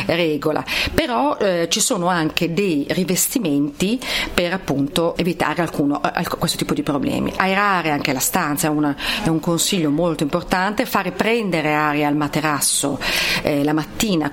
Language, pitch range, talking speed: Italian, 150-190 Hz, 150 wpm